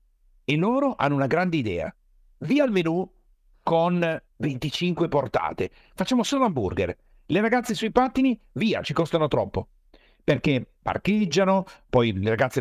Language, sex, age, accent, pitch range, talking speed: Italian, male, 50-69, native, 130-190 Hz, 135 wpm